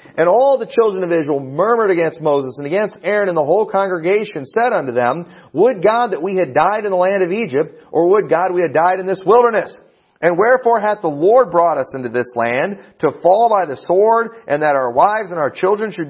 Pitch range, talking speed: 145-205 Hz, 230 wpm